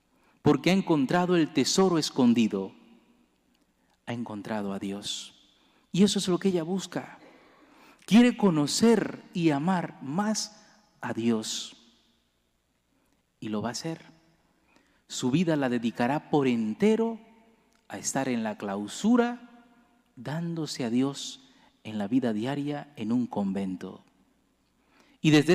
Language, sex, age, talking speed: English, male, 40-59, 120 wpm